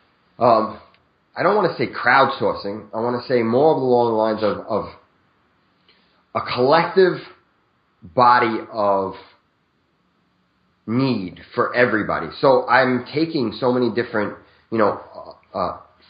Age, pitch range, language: 30-49, 110-135 Hz, English